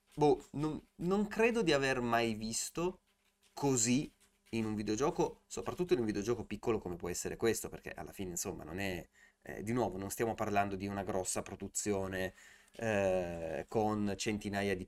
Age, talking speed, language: 30-49, 165 wpm, Italian